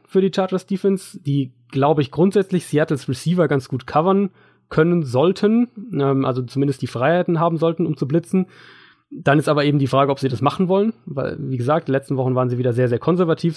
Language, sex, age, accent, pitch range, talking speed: German, male, 30-49, German, 130-160 Hz, 210 wpm